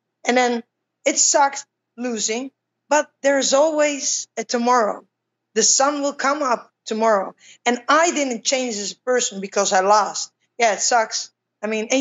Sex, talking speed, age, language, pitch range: female, 155 wpm, 20-39, English, 215-275 Hz